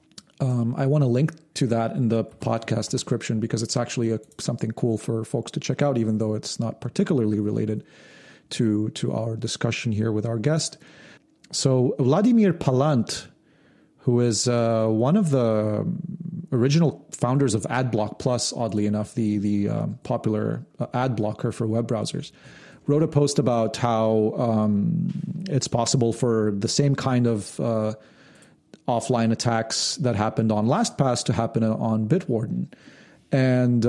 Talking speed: 150 wpm